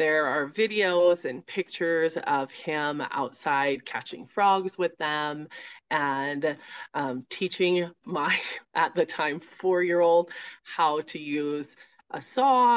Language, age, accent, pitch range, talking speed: English, 30-49, American, 145-185 Hz, 120 wpm